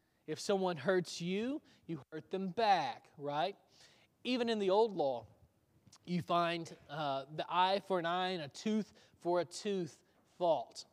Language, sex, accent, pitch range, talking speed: English, male, American, 165-210 Hz, 160 wpm